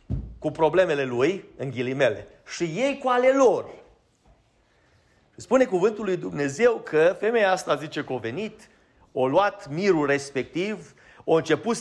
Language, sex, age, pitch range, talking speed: Romanian, male, 30-49, 155-235 Hz, 135 wpm